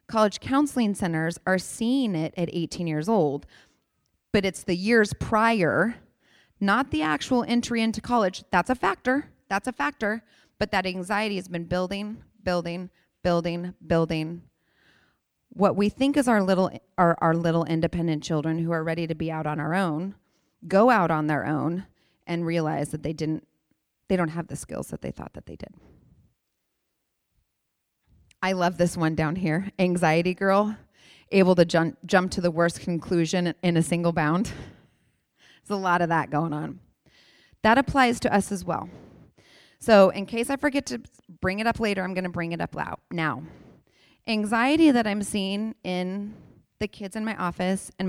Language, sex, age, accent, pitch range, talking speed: English, female, 30-49, American, 165-210 Hz, 170 wpm